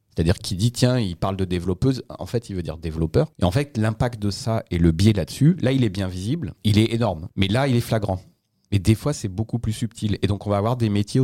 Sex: male